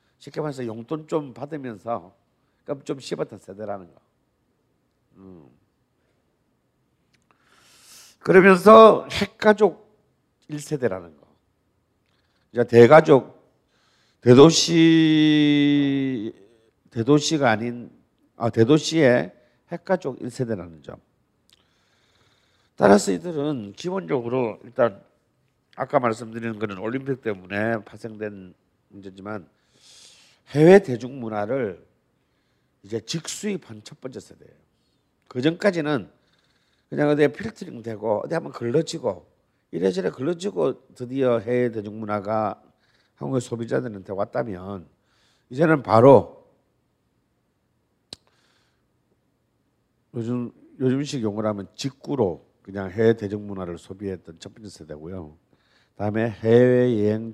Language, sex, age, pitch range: Korean, male, 50-69, 105-145 Hz